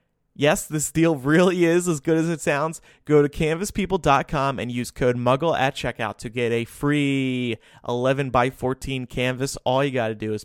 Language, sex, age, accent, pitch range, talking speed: English, male, 30-49, American, 125-165 Hz, 180 wpm